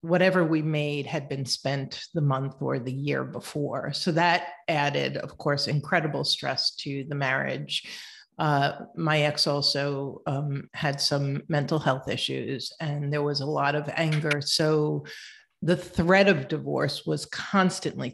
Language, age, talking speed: English, 50-69, 150 wpm